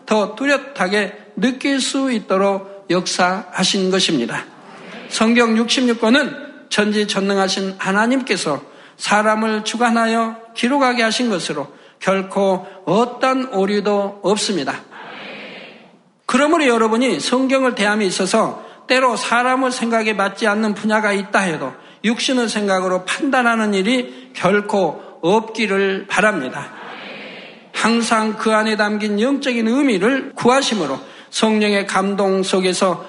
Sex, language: male, Korean